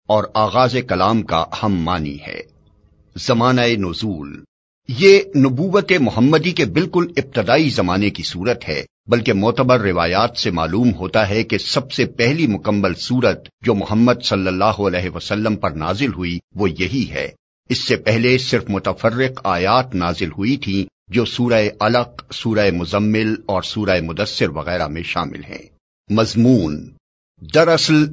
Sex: male